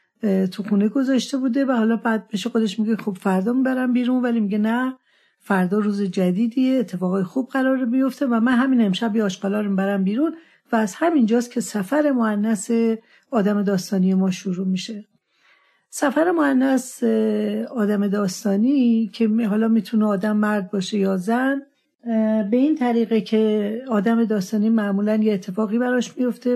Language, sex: Persian, female